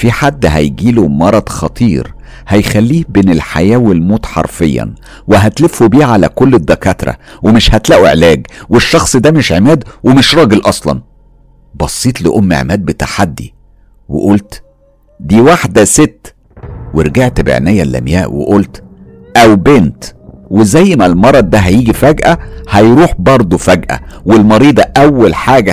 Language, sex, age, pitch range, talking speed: Arabic, male, 50-69, 80-110 Hz, 120 wpm